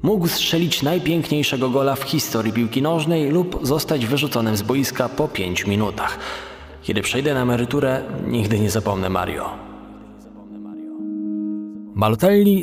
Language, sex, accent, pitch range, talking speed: Polish, male, native, 105-155 Hz, 120 wpm